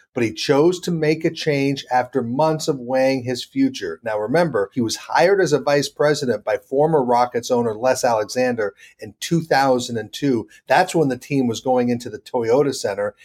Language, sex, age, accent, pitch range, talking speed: English, male, 40-59, American, 125-155 Hz, 180 wpm